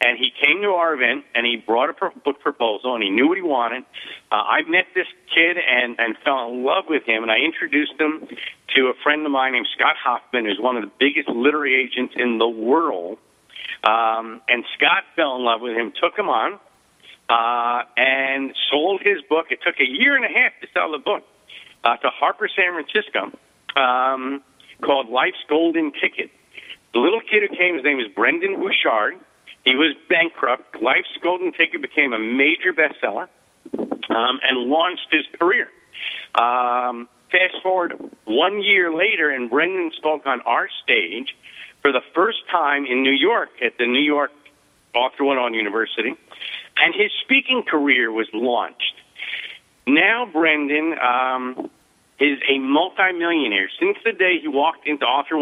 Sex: male